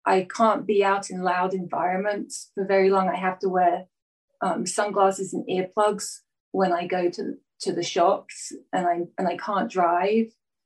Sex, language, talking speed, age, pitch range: female, English, 170 wpm, 30-49, 180-210 Hz